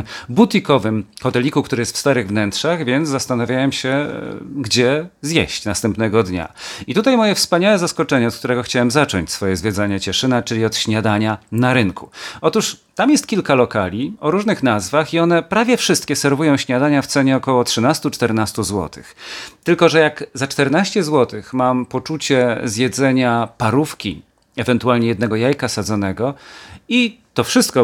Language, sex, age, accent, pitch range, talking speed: Polish, male, 40-59, native, 115-150 Hz, 145 wpm